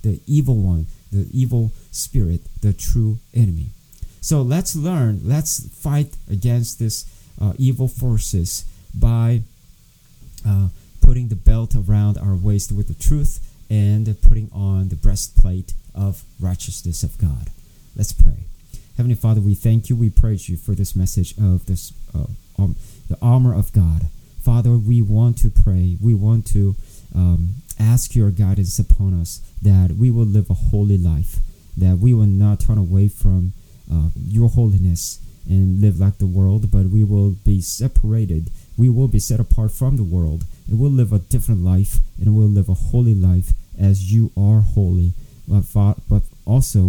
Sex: male